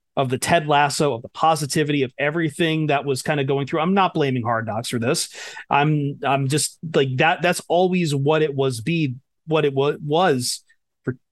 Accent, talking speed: American, 195 wpm